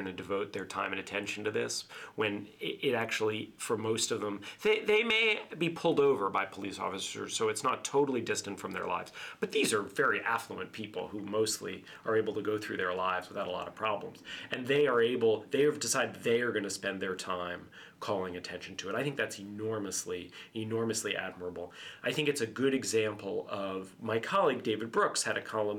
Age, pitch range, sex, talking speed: 40-59, 100-140 Hz, male, 210 wpm